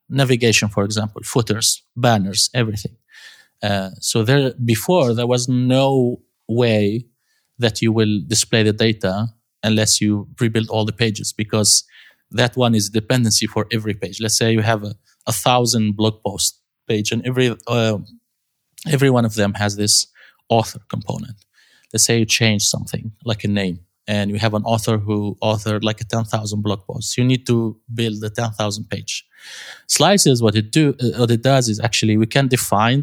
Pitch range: 110-125 Hz